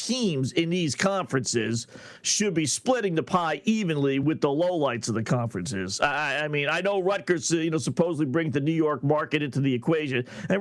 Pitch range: 145-190 Hz